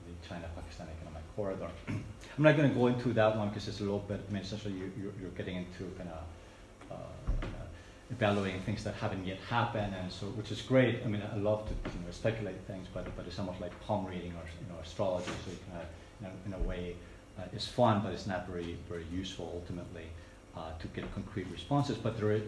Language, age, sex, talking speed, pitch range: English, 30-49, male, 230 wpm, 90-105 Hz